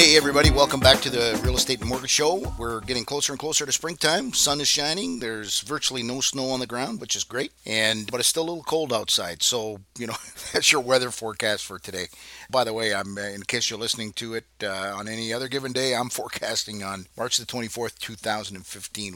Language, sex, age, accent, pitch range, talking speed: English, male, 50-69, American, 105-125 Hz, 220 wpm